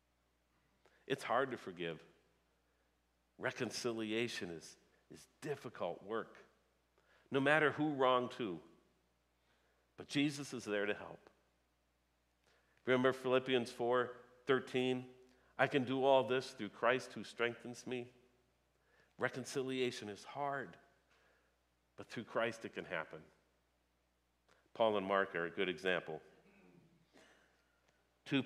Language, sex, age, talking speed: English, male, 50-69, 105 wpm